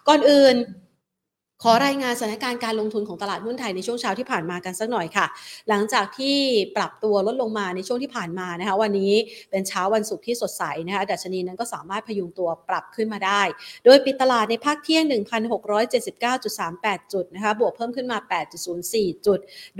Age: 30-49